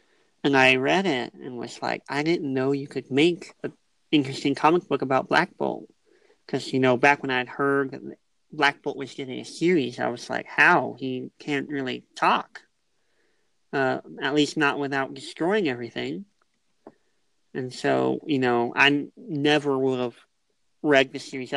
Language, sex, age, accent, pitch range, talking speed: English, male, 40-59, American, 130-150 Hz, 165 wpm